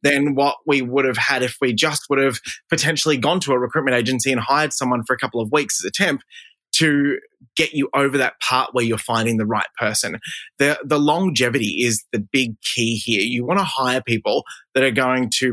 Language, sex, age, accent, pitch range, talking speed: English, male, 20-39, Australian, 125-150 Hz, 220 wpm